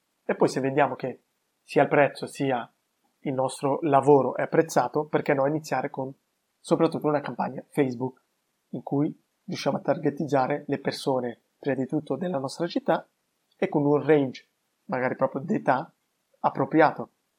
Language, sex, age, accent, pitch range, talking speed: Italian, male, 20-39, native, 135-165 Hz, 150 wpm